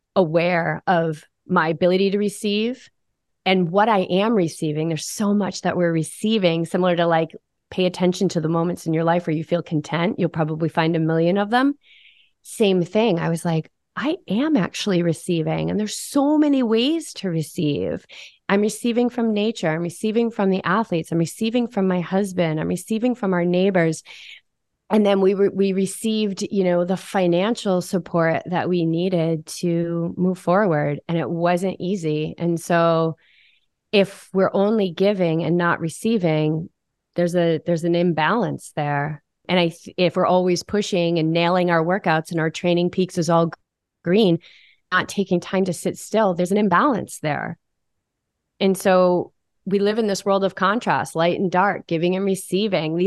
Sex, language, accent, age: female, English, American, 30-49